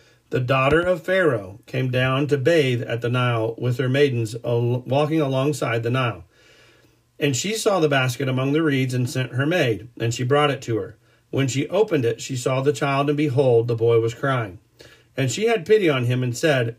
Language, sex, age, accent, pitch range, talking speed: English, male, 40-59, American, 120-150 Hz, 205 wpm